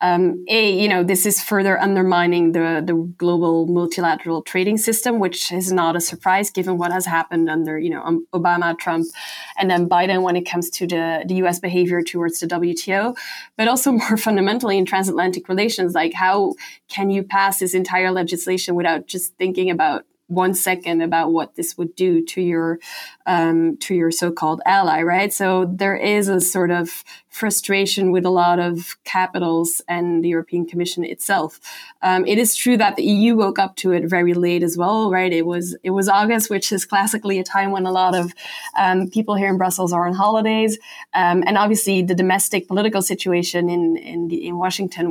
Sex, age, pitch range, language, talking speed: female, 20-39, 170-195 Hz, English, 190 wpm